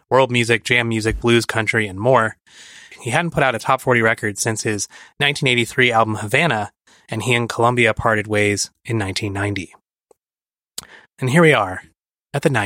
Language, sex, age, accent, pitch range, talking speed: English, male, 20-39, American, 110-135 Hz, 135 wpm